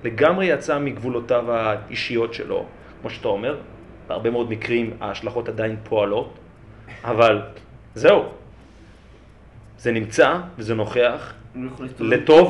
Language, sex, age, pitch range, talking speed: Hebrew, male, 30-49, 100-140 Hz, 100 wpm